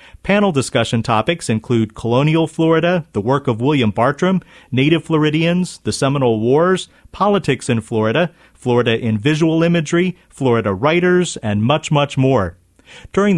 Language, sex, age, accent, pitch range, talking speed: English, male, 40-59, American, 115-170 Hz, 135 wpm